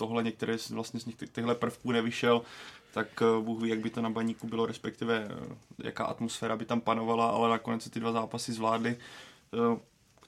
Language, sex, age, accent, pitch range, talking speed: Czech, male, 20-39, native, 115-120 Hz, 175 wpm